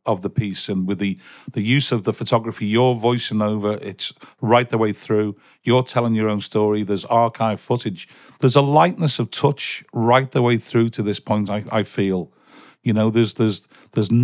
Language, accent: English, British